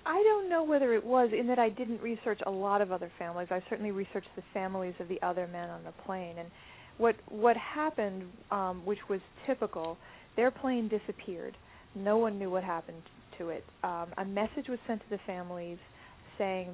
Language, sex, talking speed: English, female, 195 wpm